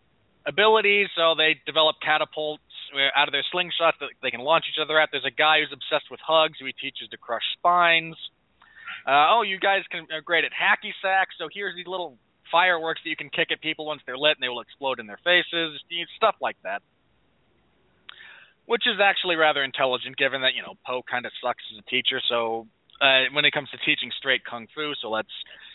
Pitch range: 135-165 Hz